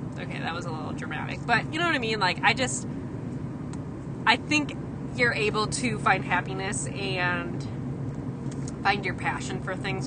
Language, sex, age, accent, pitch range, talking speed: English, female, 20-39, American, 130-140 Hz, 165 wpm